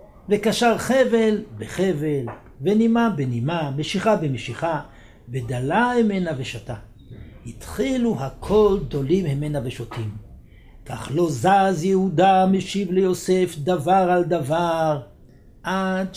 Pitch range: 120-180 Hz